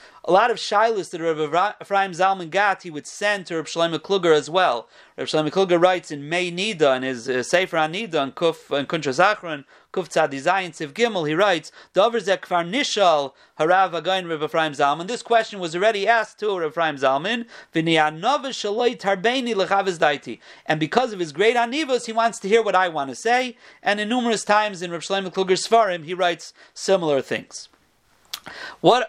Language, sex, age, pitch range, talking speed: English, male, 40-59, 155-200 Hz, 170 wpm